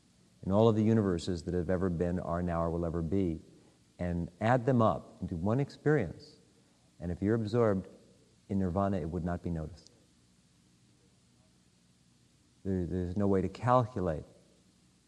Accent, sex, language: American, male, English